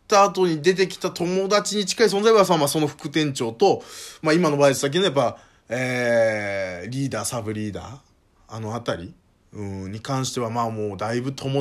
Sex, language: male, Japanese